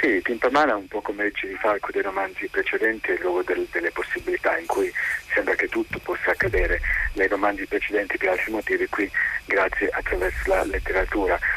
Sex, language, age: male, Italian, 50-69